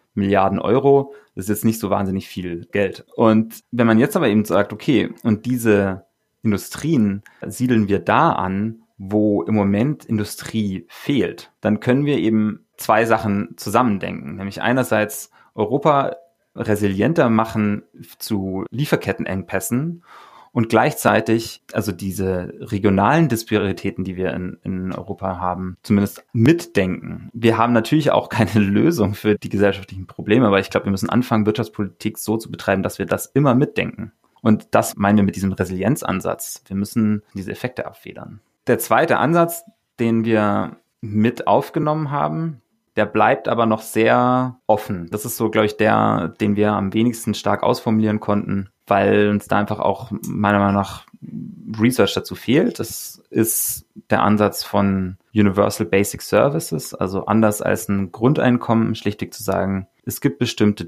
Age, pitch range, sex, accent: 30-49, 100-120 Hz, male, German